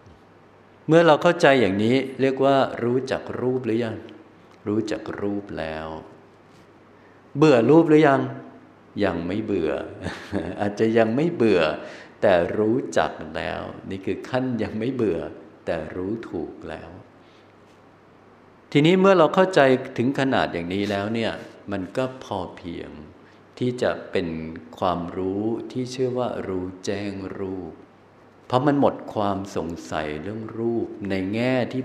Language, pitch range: Thai, 95-130 Hz